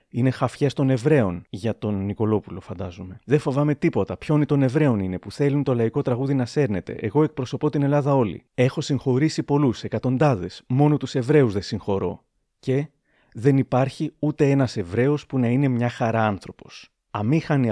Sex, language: male, Greek